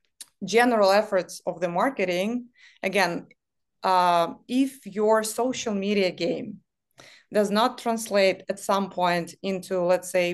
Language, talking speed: English, 120 wpm